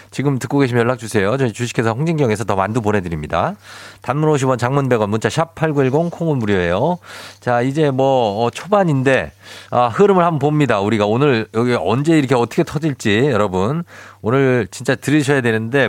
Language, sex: Korean, male